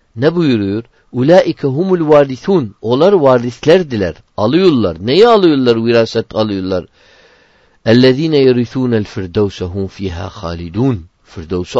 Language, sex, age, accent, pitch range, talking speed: Turkish, male, 50-69, native, 100-145 Hz, 100 wpm